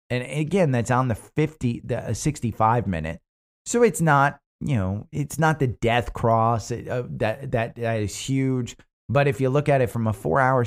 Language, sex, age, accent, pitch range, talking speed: English, male, 30-49, American, 105-135 Hz, 210 wpm